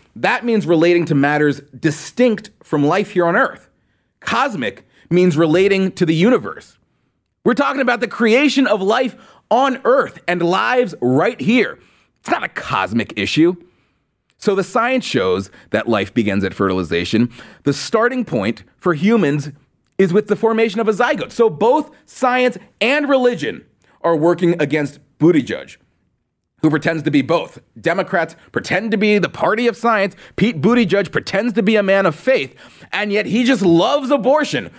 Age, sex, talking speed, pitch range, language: 30-49, male, 160 wpm, 140-235 Hz, English